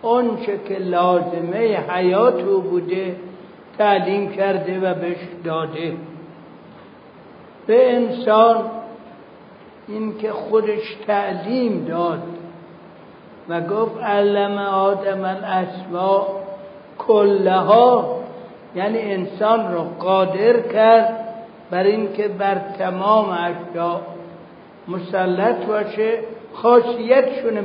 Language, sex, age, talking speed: Persian, male, 60-79, 80 wpm